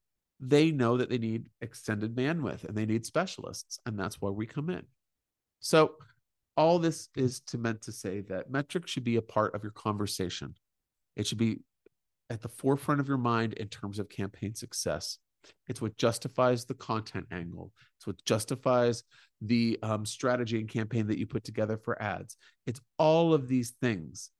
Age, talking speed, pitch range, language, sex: 40-59, 175 wpm, 105-135 Hz, English, male